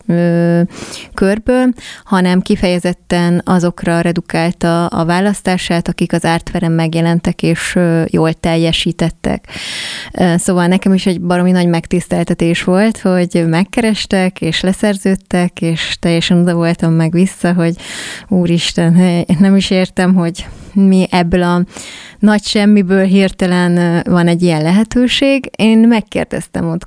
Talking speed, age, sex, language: 115 wpm, 20-39, female, Hungarian